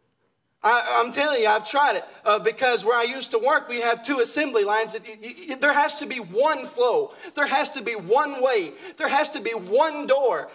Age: 30-49